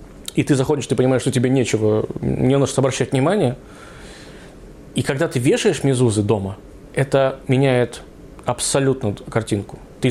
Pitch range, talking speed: 120-150 Hz, 135 wpm